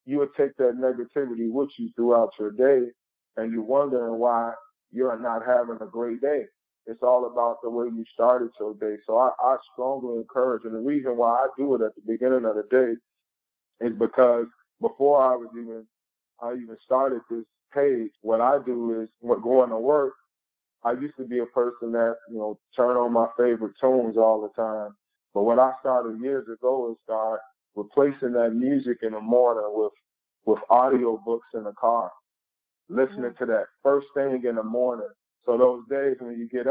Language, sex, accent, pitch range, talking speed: English, male, American, 115-130 Hz, 195 wpm